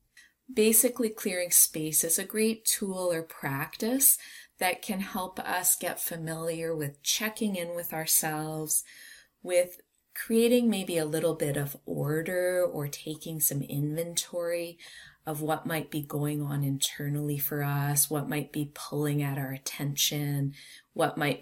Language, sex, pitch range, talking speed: English, female, 140-170 Hz, 140 wpm